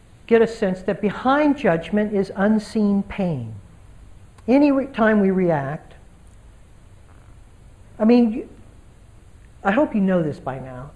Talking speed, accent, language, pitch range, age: 120 wpm, American, English, 150-230 Hz, 60-79